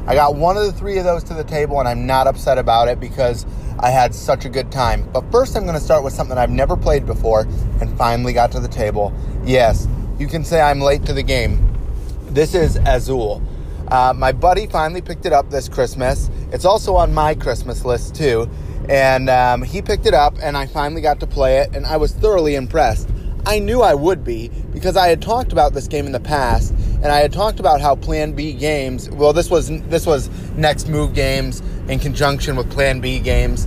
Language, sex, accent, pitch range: English, male, American, 115-150 Hz